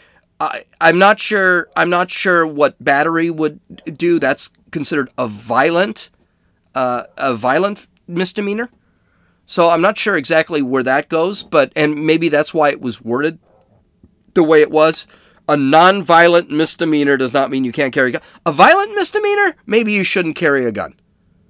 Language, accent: English, American